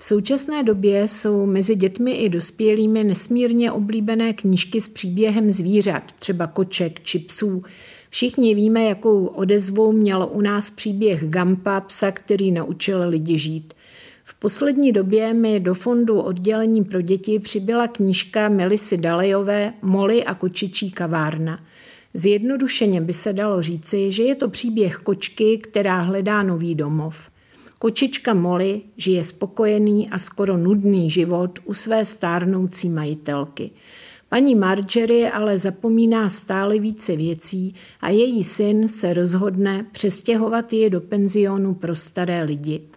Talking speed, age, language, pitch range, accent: 130 wpm, 50-69, Czech, 185-220 Hz, native